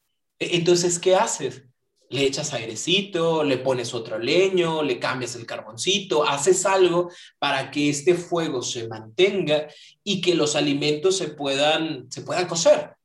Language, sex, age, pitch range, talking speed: English, male, 30-49, 135-180 Hz, 145 wpm